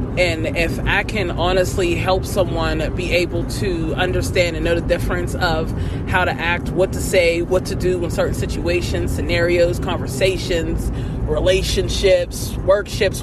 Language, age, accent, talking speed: English, 20-39, American, 145 wpm